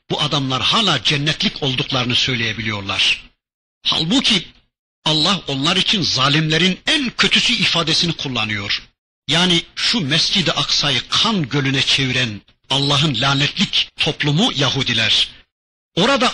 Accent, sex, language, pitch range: native, male, Turkish, 140-210 Hz